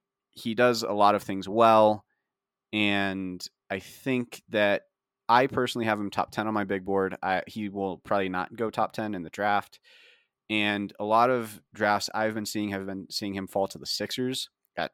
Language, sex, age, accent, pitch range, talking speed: English, male, 30-49, American, 95-110 Hz, 195 wpm